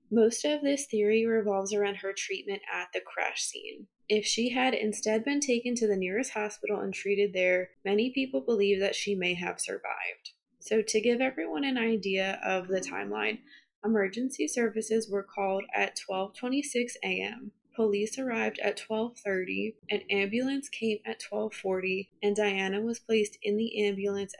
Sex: female